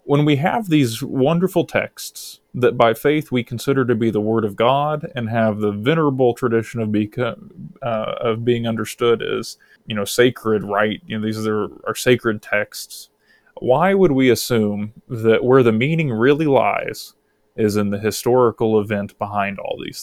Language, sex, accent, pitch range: English, male, American, 105-125 Hz